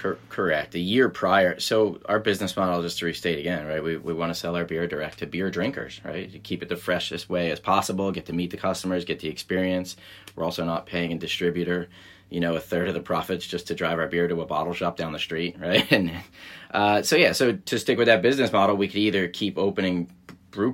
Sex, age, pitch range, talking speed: male, 30-49, 85-100 Hz, 245 wpm